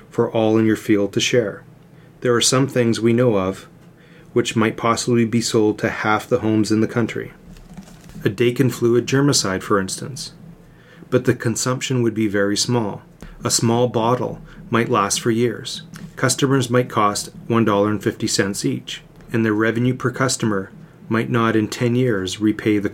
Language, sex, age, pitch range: English, male, 30-49, 110-130 Hz